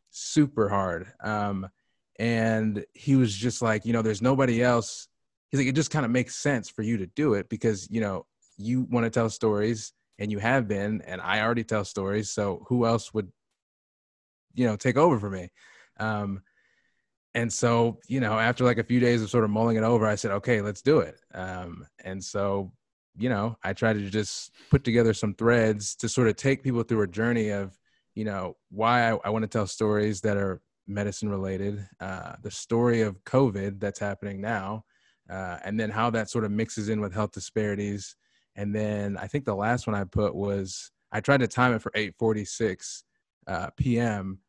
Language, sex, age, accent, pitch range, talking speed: English, male, 20-39, American, 100-115 Hz, 200 wpm